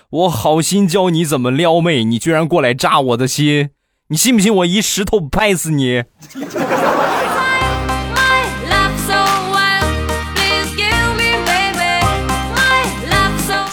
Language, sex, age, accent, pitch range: Chinese, male, 20-39, native, 100-155 Hz